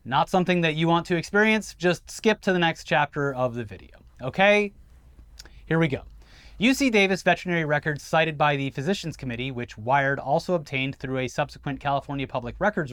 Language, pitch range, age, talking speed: English, 130-180 Hz, 30-49, 180 wpm